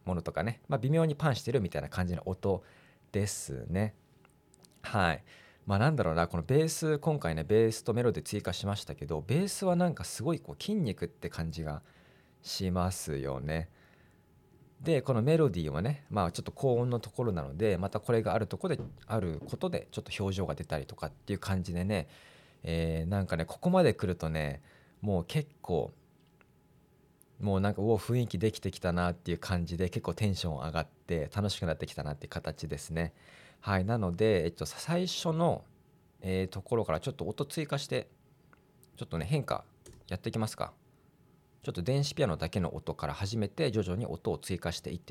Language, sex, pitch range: Japanese, male, 85-120 Hz